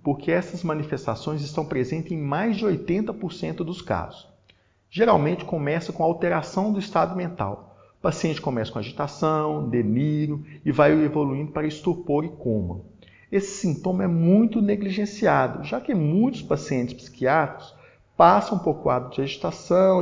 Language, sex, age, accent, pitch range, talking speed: Portuguese, male, 50-69, Brazilian, 125-175 Hz, 140 wpm